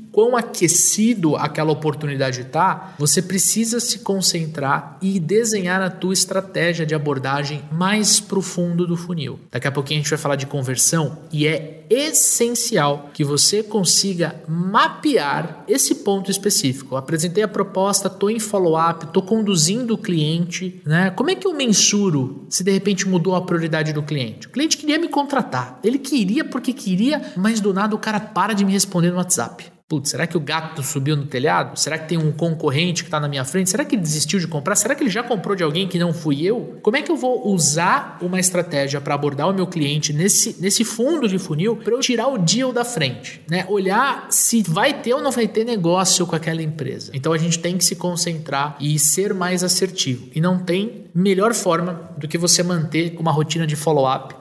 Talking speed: 200 wpm